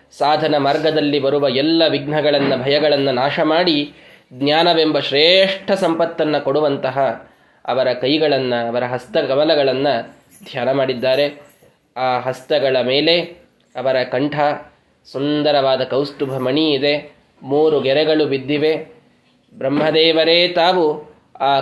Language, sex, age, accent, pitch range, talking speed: Kannada, male, 20-39, native, 135-155 Hz, 90 wpm